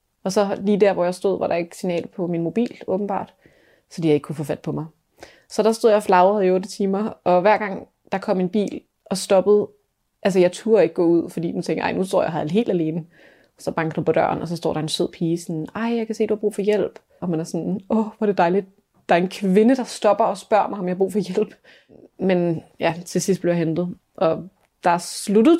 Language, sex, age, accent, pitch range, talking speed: Danish, female, 20-39, native, 170-205 Hz, 265 wpm